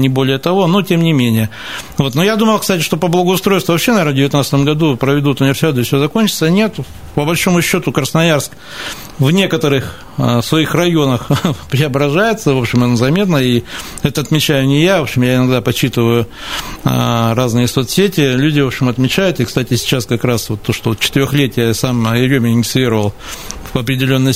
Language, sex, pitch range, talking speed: Russian, male, 120-150 Hz, 170 wpm